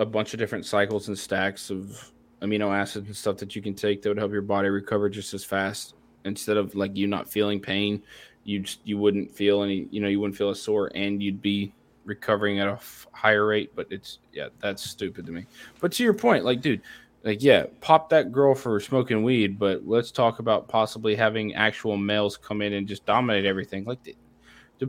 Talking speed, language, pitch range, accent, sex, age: 215 wpm, English, 100-125 Hz, American, male, 20-39